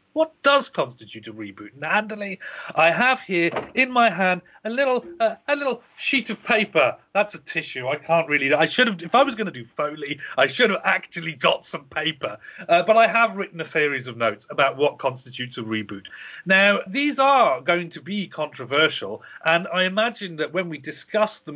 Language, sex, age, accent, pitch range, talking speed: English, male, 40-59, British, 140-220 Hz, 200 wpm